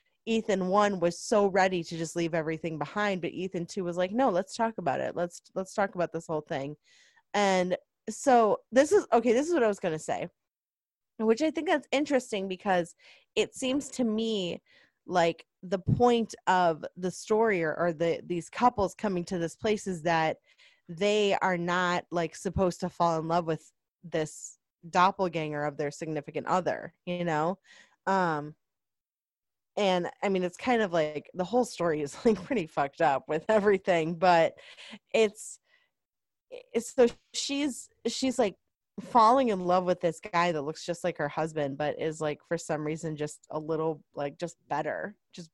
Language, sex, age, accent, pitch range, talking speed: English, female, 20-39, American, 170-225 Hz, 180 wpm